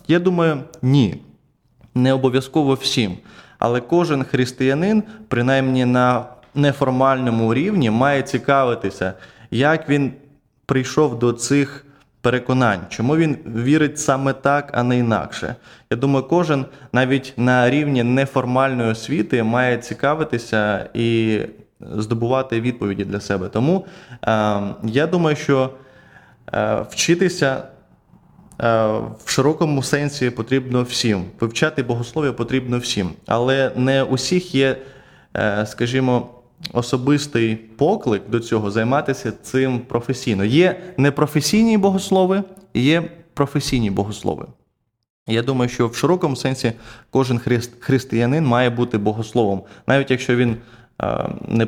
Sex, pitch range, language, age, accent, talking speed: male, 115-140 Hz, Ukrainian, 20-39, native, 110 wpm